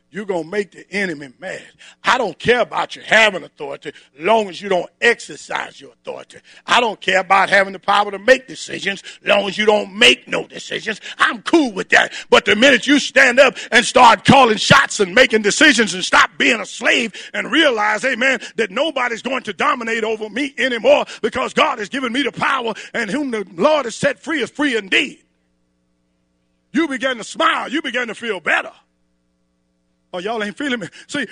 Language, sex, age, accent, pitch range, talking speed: English, male, 50-69, American, 195-280 Hz, 195 wpm